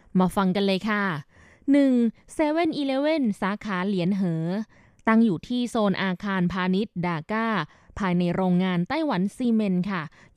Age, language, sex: 20-39, Thai, female